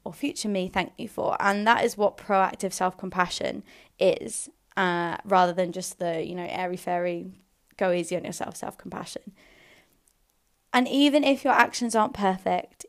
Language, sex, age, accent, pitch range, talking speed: English, female, 20-39, British, 185-230 Hz, 170 wpm